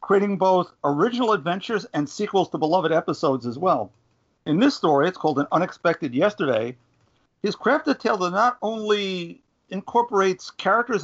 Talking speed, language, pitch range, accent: 145 wpm, English, 155-200 Hz, American